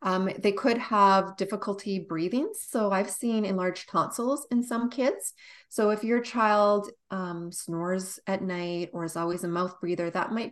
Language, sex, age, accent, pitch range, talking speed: English, female, 30-49, American, 175-225 Hz, 170 wpm